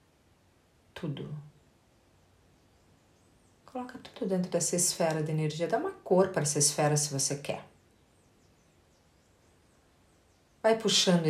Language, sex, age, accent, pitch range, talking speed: Portuguese, female, 40-59, Brazilian, 150-195 Hz, 100 wpm